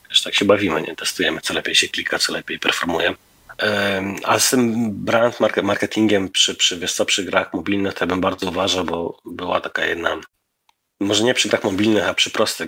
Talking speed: 195 wpm